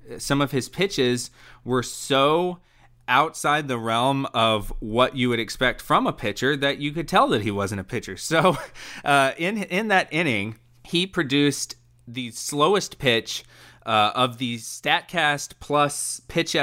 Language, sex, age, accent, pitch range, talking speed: English, male, 20-39, American, 115-145 Hz, 155 wpm